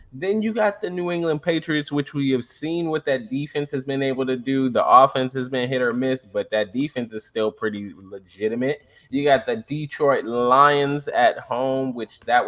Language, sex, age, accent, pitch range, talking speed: English, male, 20-39, American, 120-165 Hz, 200 wpm